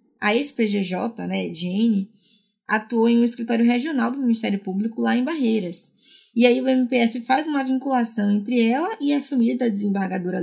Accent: Brazilian